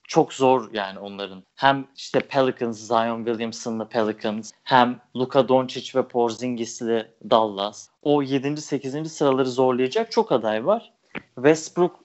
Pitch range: 115-155 Hz